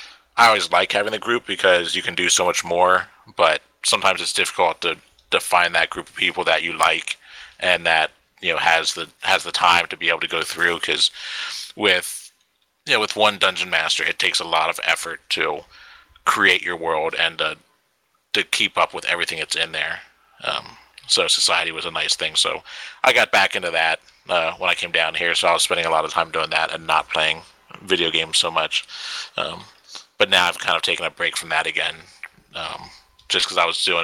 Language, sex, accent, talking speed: English, male, American, 220 wpm